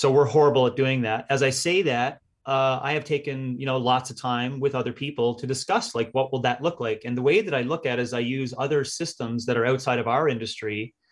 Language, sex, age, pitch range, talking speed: English, male, 30-49, 125-160 Hz, 265 wpm